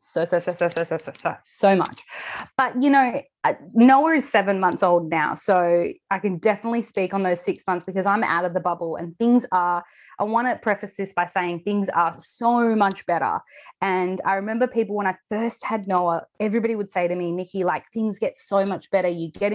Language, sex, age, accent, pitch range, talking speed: English, female, 20-39, Australian, 180-220 Hz, 215 wpm